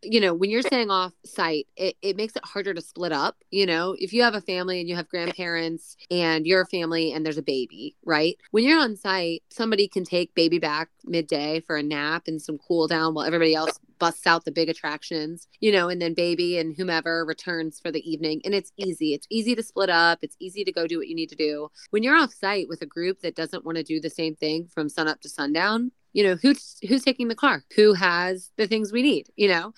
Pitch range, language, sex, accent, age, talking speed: 165-215 Hz, English, female, American, 20-39, 250 wpm